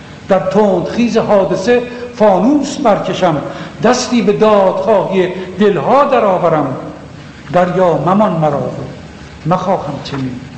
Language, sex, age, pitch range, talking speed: English, male, 60-79, 155-205 Hz, 95 wpm